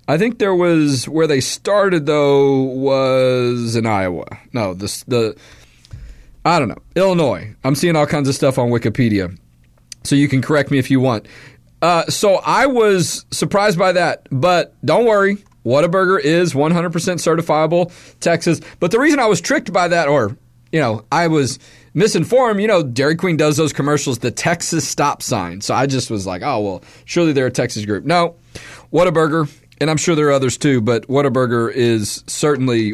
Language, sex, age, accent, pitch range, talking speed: English, male, 40-59, American, 135-195 Hz, 180 wpm